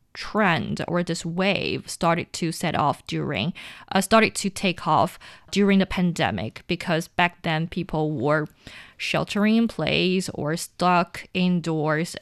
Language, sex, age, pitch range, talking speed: English, female, 20-39, 170-195 Hz, 140 wpm